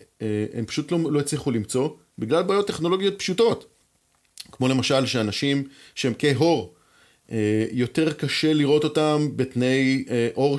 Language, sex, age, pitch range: Hebrew, male, 30-49, 120-160 Hz